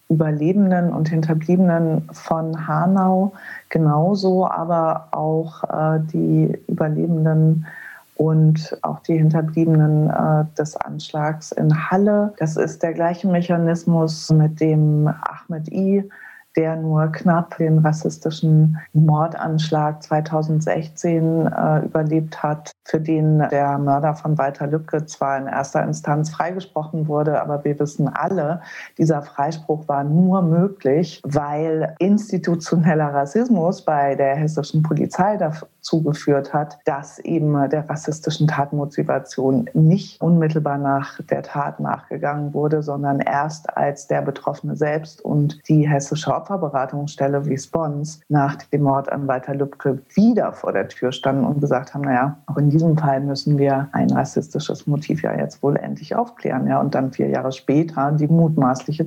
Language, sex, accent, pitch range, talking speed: German, female, German, 145-165 Hz, 135 wpm